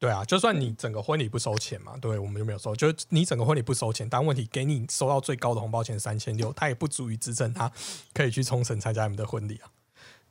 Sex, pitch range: male, 110-155 Hz